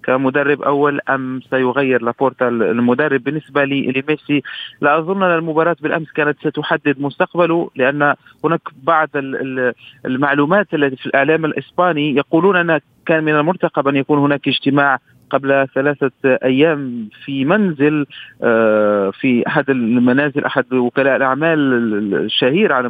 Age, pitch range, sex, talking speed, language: 40-59, 135-165 Hz, male, 120 wpm, Arabic